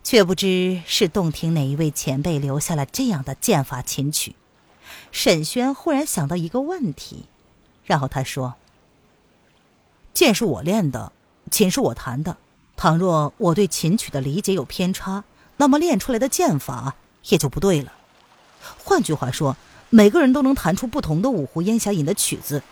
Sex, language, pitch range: female, Chinese, 150-205 Hz